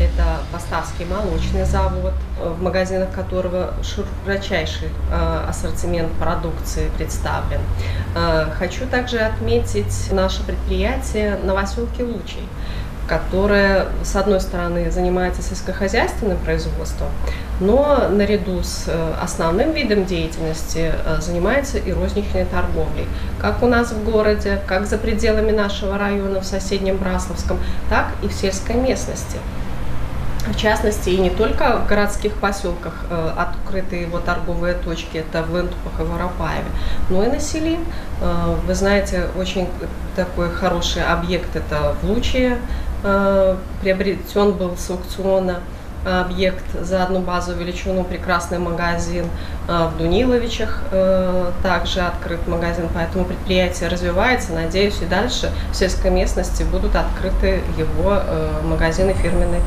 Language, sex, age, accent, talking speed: Russian, female, 20-39, native, 115 wpm